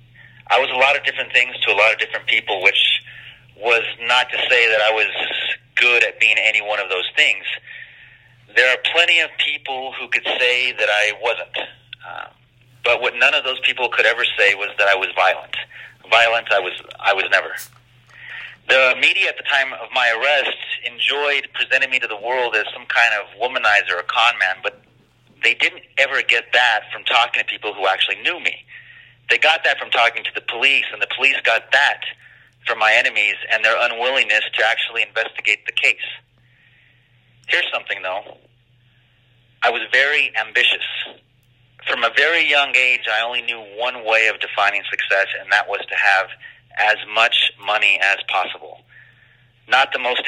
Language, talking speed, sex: English, 185 wpm, male